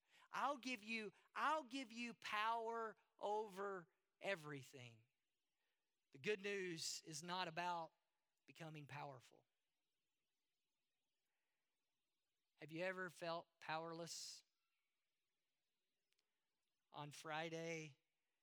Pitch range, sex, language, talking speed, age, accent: 150-190 Hz, male, English, 80 wpm, 40-59, American